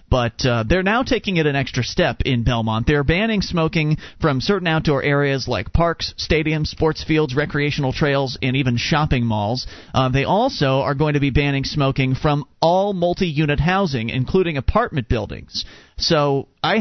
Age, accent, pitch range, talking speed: 30-49, American, 125-165 Hz, 170 wpm